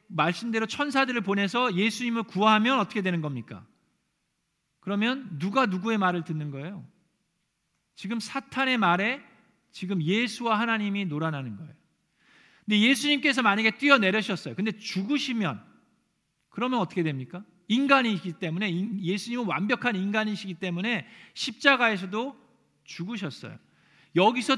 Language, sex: Korean, male